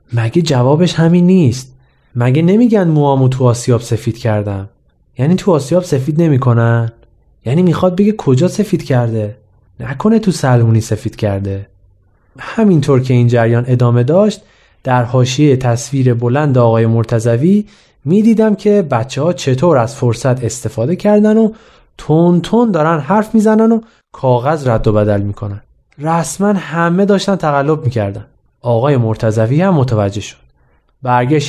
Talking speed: 130 wpm